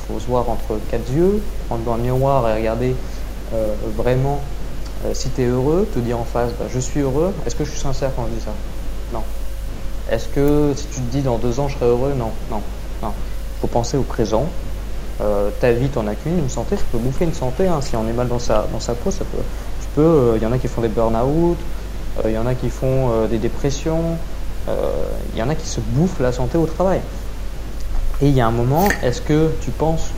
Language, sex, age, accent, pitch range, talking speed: French, male, 20-39, French, 110-140 Hz, 245 wpm